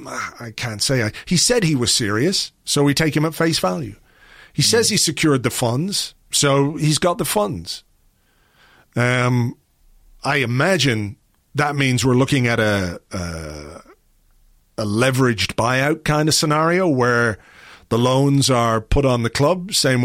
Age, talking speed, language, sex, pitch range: 40-59, 155 wpm, English, male, 115-145 Hz